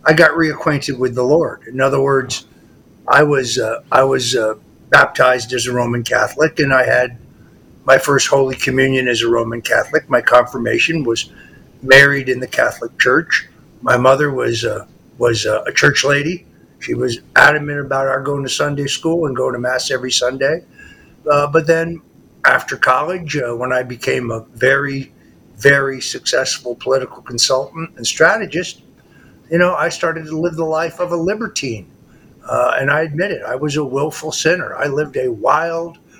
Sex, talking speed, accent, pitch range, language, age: male, 170 wpm, American, 130-165 Hz, English, 50-69